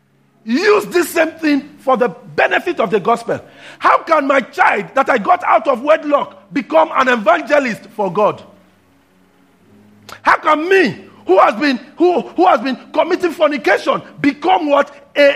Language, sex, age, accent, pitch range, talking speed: English, male, 50-69, Nigerian, 215-325 Hz, 155 wpm